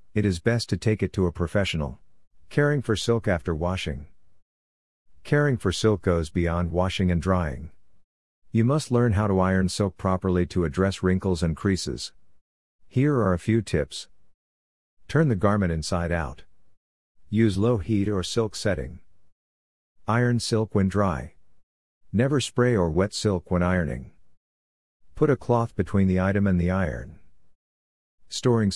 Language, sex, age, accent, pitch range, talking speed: English, male, 50-69, American, 85-105 Hz, 150 wpm